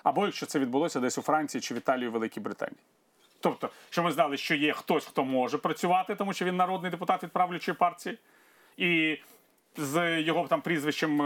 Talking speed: 185 wpm